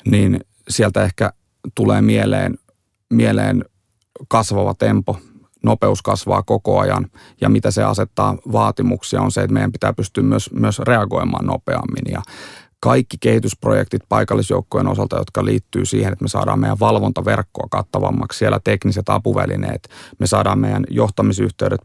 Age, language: 30-49, Finnish